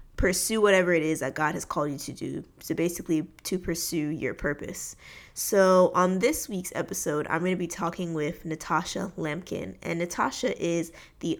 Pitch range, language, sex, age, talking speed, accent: 165-200 Hz, English, female, 20-39, 180 wpm, American